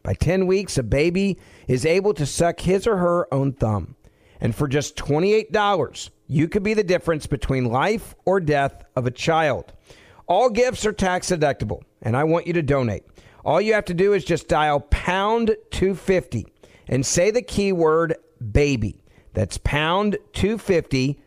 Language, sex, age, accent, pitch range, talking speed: English, male, 50-69, American, 135-195 Hz, 165 wpm